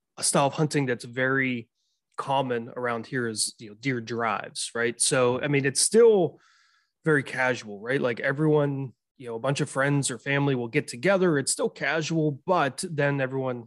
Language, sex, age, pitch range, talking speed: English, male, 20-39, 120-140 Hz, 185 wpm